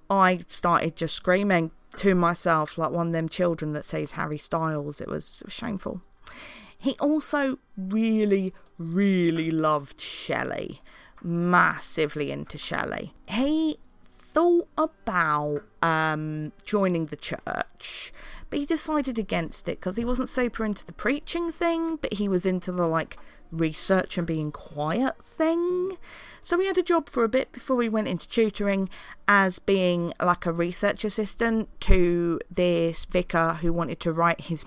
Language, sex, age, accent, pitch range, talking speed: English, female, 40-59, British, 160-205 Hz, 150 wpm